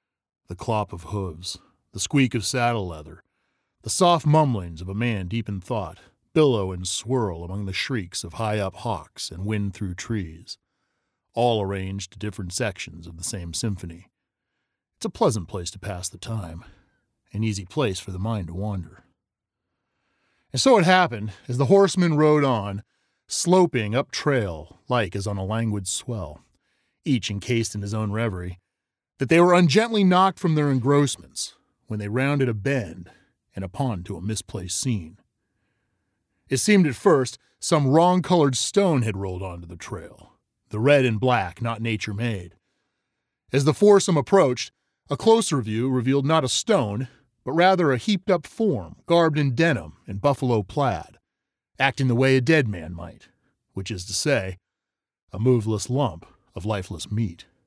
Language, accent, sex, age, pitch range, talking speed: English, American, male, 40-59, 95-135 Hz, 160 wpm